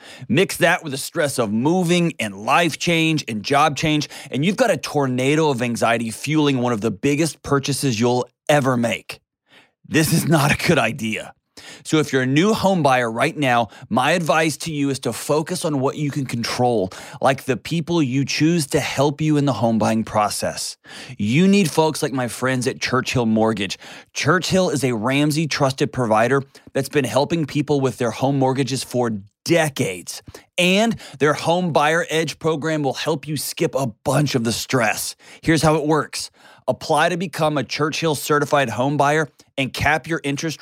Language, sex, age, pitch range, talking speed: English, male, 20-39, 125-160 Hz, 185 wpm